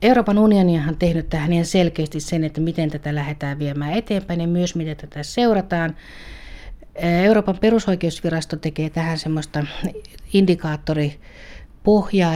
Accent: native